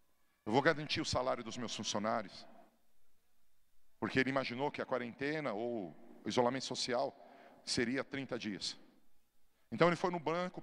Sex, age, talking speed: male, 40-59, 145 wpm